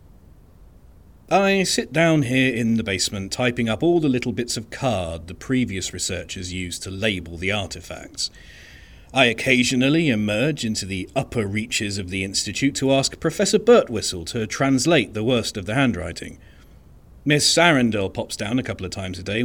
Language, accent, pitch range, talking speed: English, British, 90-135 Hz, 165 wpm